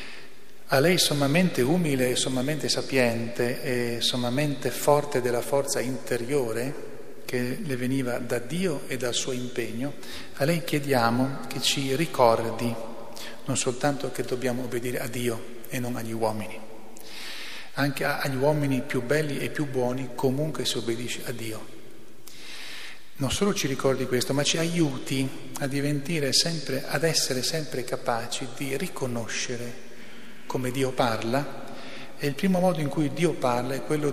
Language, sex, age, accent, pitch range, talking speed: Italian, male, 40-59, native, 120-140 Hz, 140 wpm